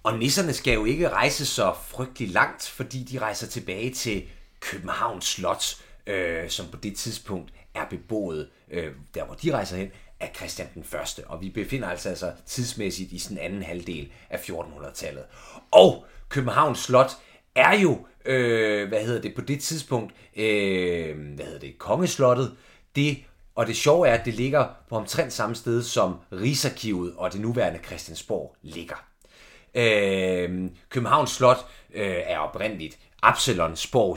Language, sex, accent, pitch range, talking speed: Danish, male, native, 90-125 Hz, 155 wpm